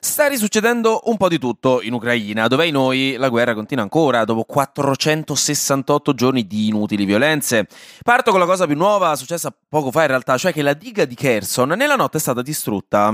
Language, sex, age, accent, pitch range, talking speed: Italian, male, 20-39, native, 125-175 Hz, 195 wpm